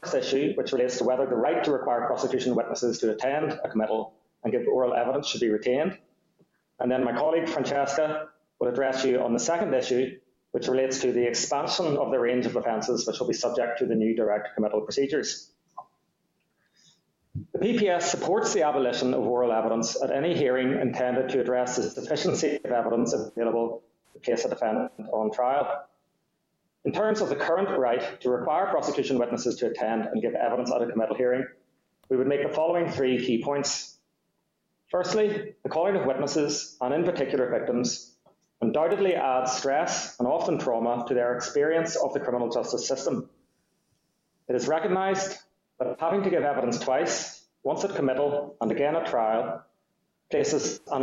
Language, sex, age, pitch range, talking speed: English, male, 30-49, 120-150 Hz, 175 wpm